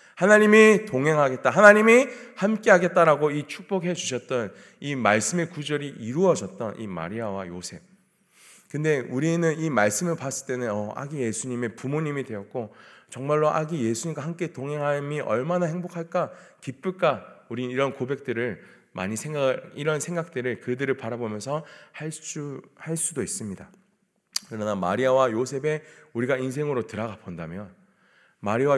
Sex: male